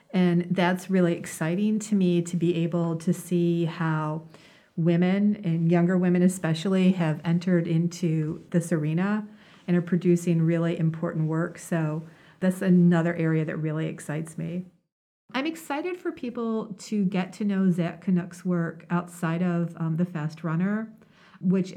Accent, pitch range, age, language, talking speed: American, 165-190 Hz, 40-59, English, 150 wpm